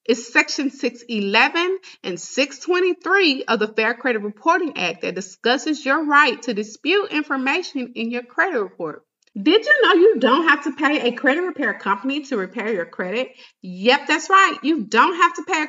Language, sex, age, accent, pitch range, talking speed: English, female, 30-49, American, 230-310 Hz, 180 wpm